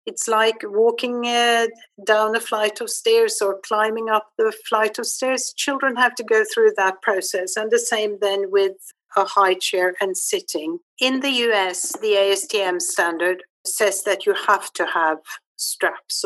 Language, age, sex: English, 50-69, female